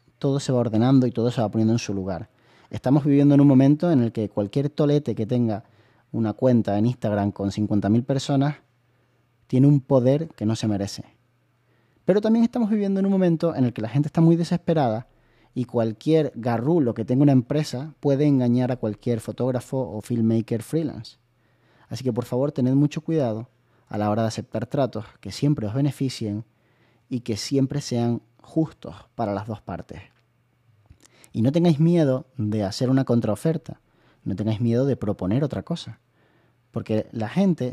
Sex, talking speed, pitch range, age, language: male, 180 wpm, 115-140 Hz, 30-49, Spanish